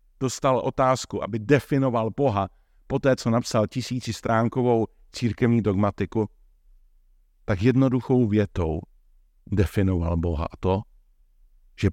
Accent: native